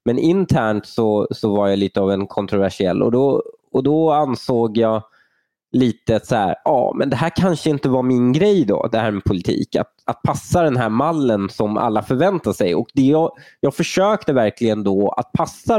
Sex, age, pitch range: male, 20-39, 100-130 Hz